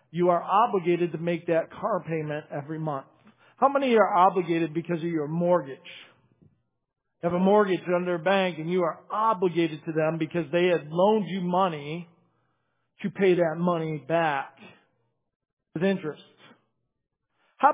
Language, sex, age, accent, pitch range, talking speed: English, male, 50-69, American, 170-215 Hz, 150 wpm